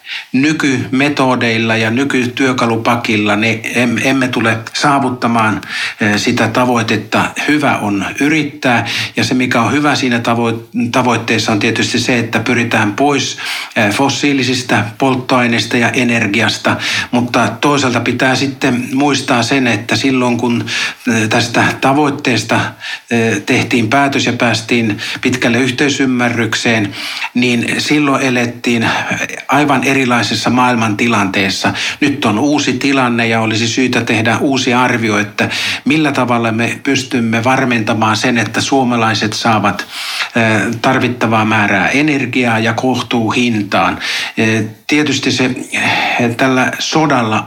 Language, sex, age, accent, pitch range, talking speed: Finnish, male, 60-79, native, 115-130 Hz, 105 wpm